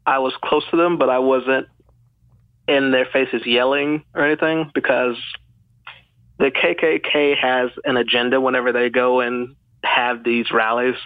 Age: 30-49